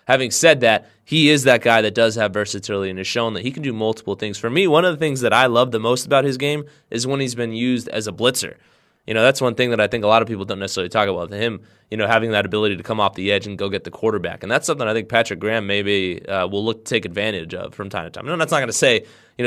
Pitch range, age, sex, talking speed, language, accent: 105-125 Hz, 20-39, male, 310 wpm, English, American